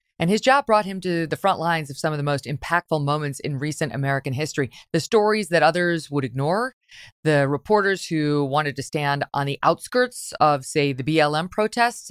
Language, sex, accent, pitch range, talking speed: English, female, American, 140-170 Hz, 200 wpm